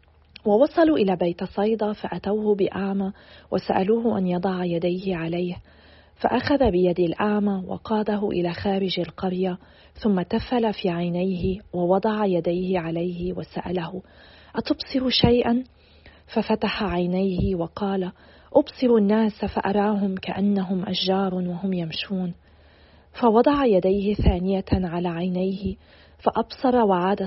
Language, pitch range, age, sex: Arabic, 180-210 Hz, 40-59, female